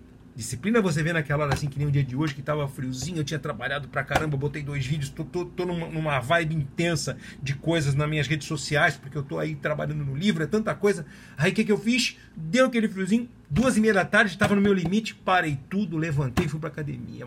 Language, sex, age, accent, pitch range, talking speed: Portuguese, male, 40-59, Brazilian, 120-170 Hz, 250 wpm